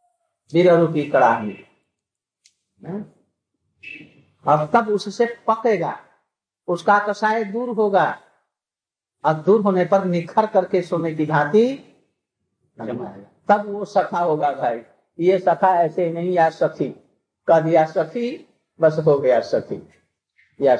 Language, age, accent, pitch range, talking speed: Hindi, 50-69, native, 175-230 Hz, 90 wpm